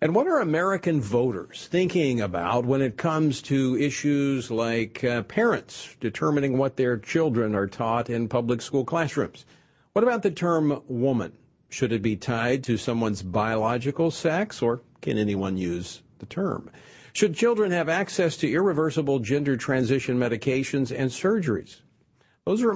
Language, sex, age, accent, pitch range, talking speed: English, male, 50-69, American, 120-165 Hz, 150 wpm